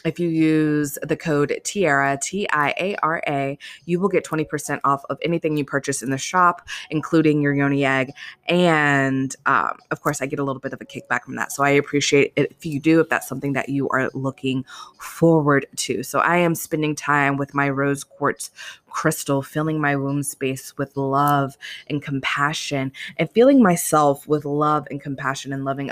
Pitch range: 140-160 Hz